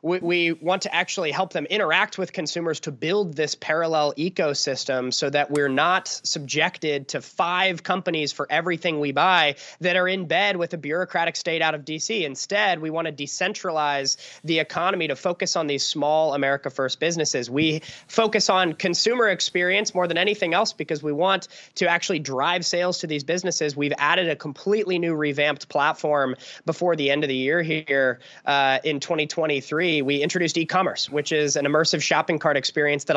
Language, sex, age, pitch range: English, male, 20-39, 145-180 Hz